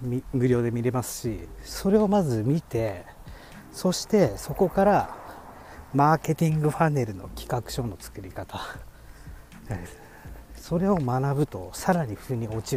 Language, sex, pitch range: Japanese, male, 110-150 Hz